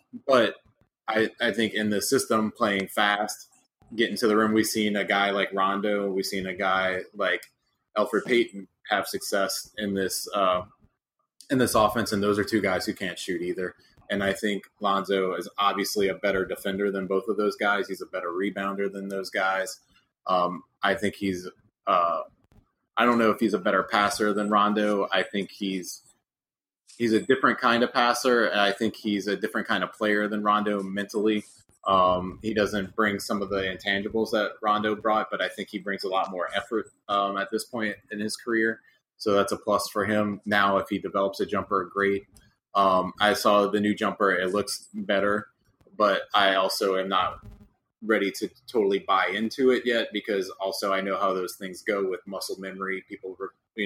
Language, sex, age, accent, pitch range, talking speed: English, male, 20-39, American, 95-105 Hz, 195 wpm